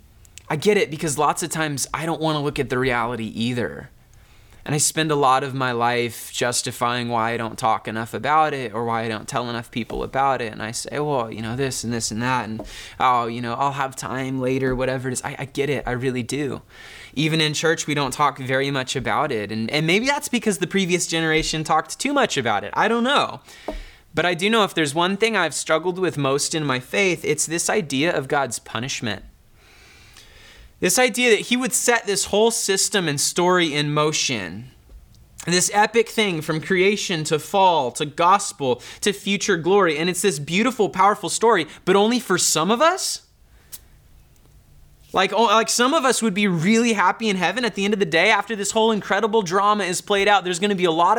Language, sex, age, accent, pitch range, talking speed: English, male, 20-39, American, 130-205 Hz, 215 wpm